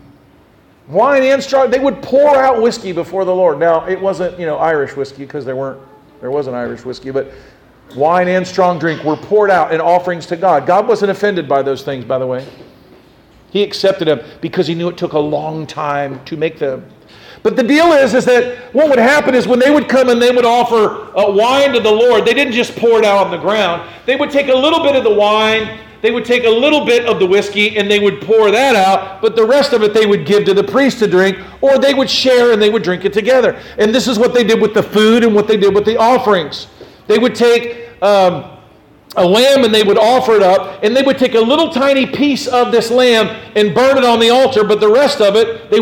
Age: 50-69